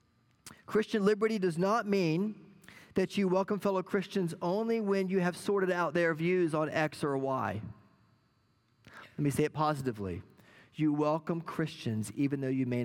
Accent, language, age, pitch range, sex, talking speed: American, English, 40-59, 120-190 Hz, male, 160 wpm